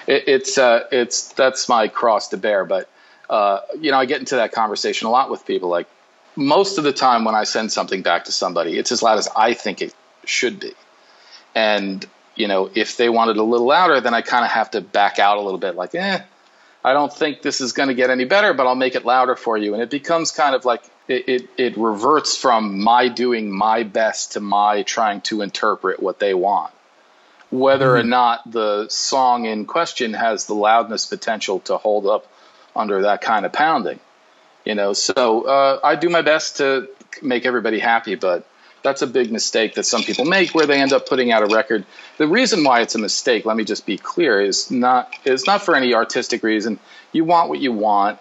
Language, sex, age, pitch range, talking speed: English, male, 40-59, 115-155 Hz, 220 wpm